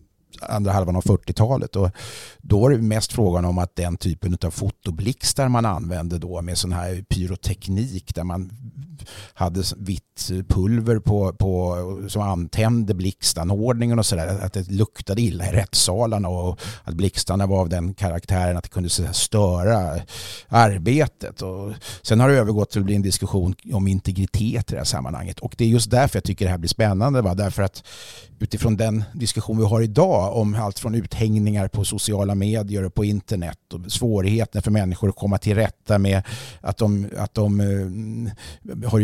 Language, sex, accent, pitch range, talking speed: Swedish, male, native, 95-110 Hz, 180 wpm